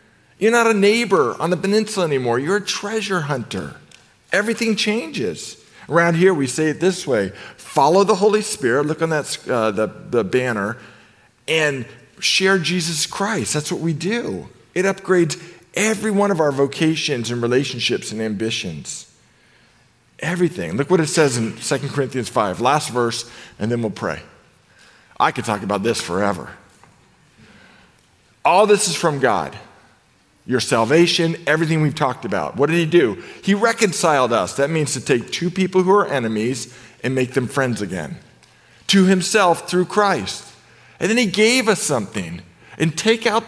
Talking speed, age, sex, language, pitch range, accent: 160 wpm, 50-69, male, English, 135-195 Hz, American